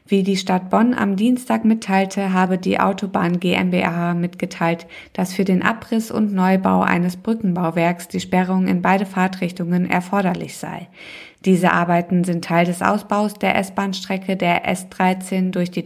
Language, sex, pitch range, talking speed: German, female, 175-200 Hz, 150 wpm